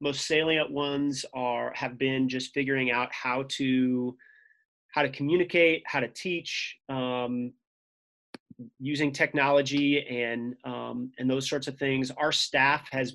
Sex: male